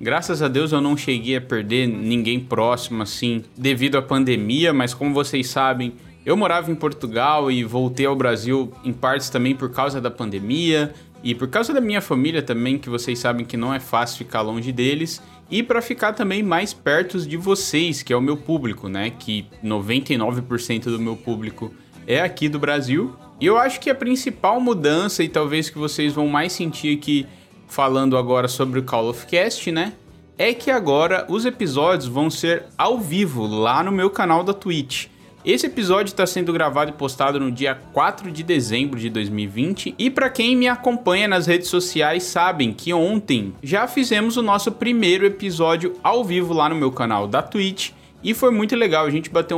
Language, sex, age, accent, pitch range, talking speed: Portuguese, male, 20-39, Brazilian, 125-180 Hz, 190 wpm